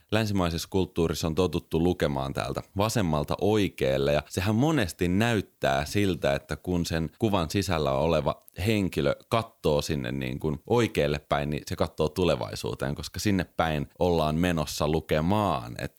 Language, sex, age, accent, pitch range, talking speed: Finnish, male, 30-49, native, 80-110 Hz, 140 wpm